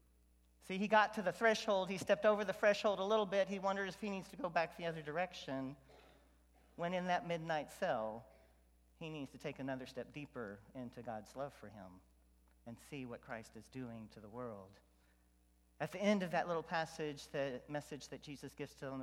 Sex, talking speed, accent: male, 200 wpm, American